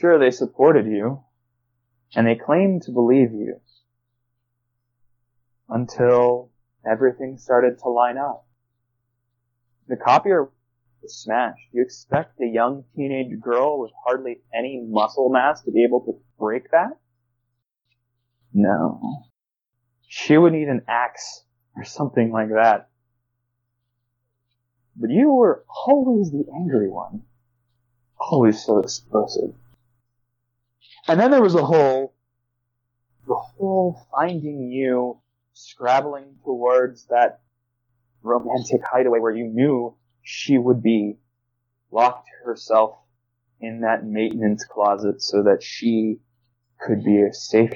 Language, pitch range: English, 120-125 Hz